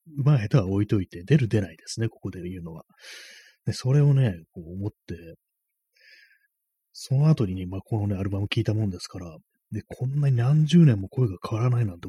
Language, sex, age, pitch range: Japanese, male, 30-49, 95-130 Hz